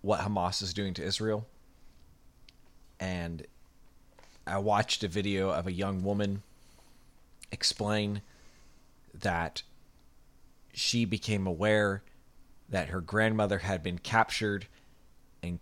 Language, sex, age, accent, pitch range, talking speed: English, male, 30-49, American, 90-110 Hz, 105 wpm